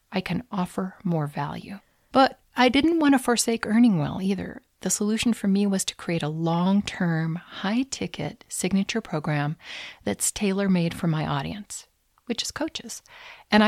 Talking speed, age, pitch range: 155 wpm, 40-59, 165-220 Hz